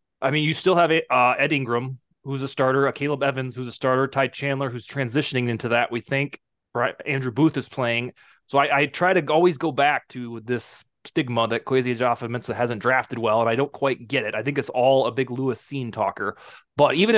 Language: English